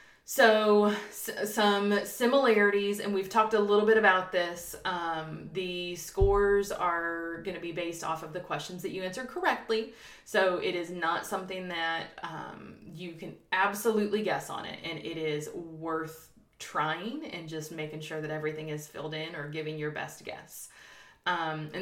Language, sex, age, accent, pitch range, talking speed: English, female, 20-39, American, 165-205 Hz, 170 wpm